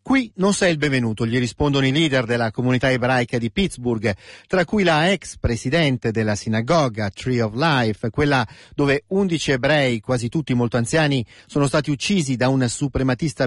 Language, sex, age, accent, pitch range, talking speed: Italian, male, 40-59, native, 110-155 Hz, 170 wpm